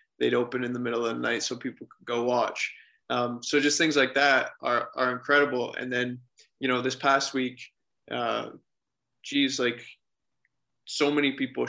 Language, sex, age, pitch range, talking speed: English, male, 20-39, 125-145 Hz, 180 wpm